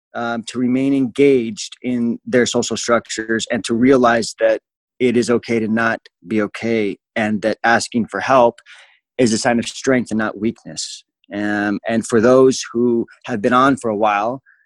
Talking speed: 175 wpm